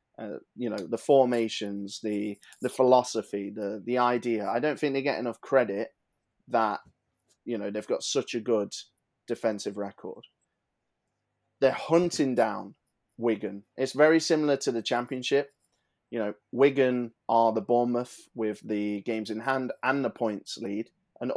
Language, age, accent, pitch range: English, 20-39, British, 110-135 Hz